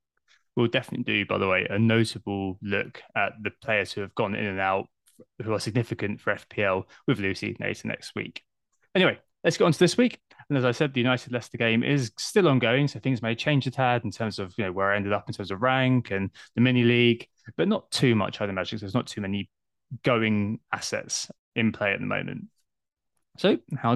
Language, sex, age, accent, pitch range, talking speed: English, male, 20-39, British, 105-140 Hz, 220 wpm